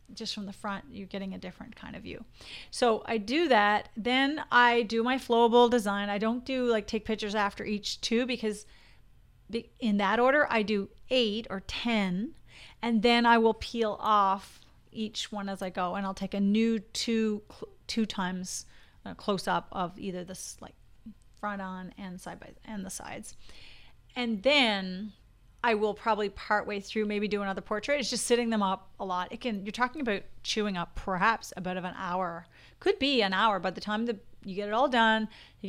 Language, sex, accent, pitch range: English, female, American, 200-235 Hz